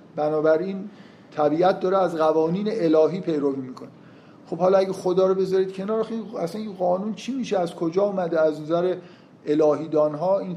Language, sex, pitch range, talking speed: Persian, male, 160-195 Hz, 155 wpm